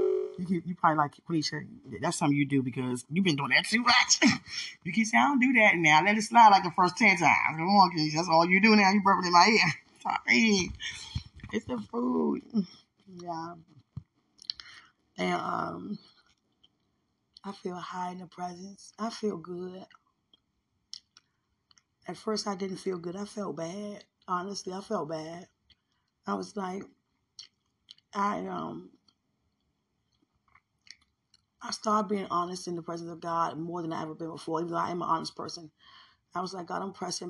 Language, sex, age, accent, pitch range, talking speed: English, female, 20-39, American, 160-190 Hz, 170 wpm